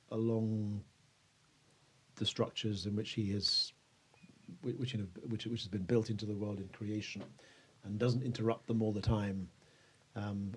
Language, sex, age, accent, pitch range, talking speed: English, male, 40-59, British, 105-125 Hz, 150 wpm